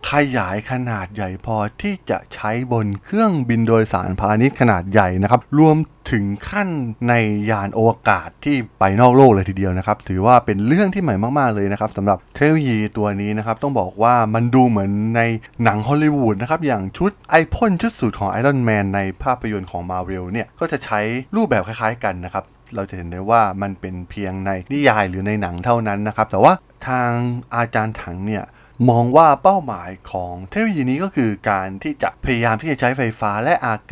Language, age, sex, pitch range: Thai, 20-39, male, 100-135 Hz